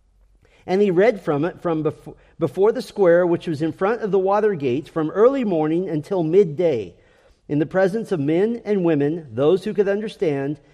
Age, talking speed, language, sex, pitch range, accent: 40-59, 190 wpm, English, male, 150-205 Hz, American